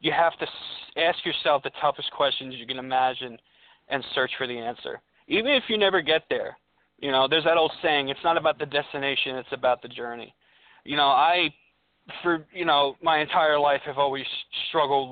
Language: English